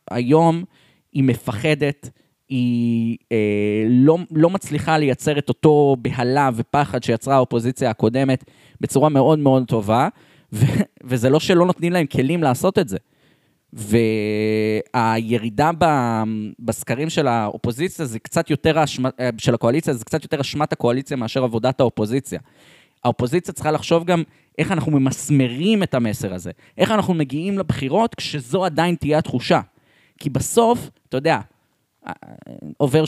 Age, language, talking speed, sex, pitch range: 20-39, Hebrew, 120 wpm, male, 125-170 Hz